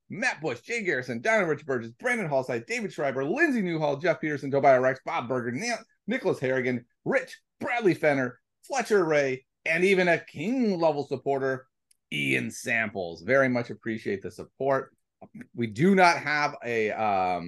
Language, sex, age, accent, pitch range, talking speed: English, male, 30-49, American, 110-155 Hz, 155 wpm